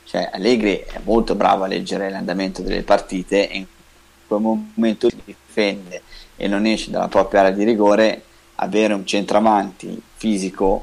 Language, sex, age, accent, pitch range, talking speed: Italian, male, 20-39, native, 95-110 Hz, 150 wpm